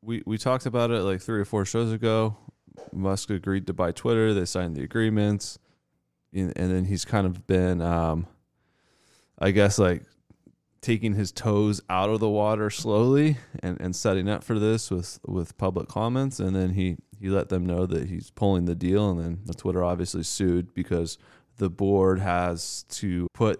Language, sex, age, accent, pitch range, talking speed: English, male, 20-39, American, 90-110 Hz, 185 wpm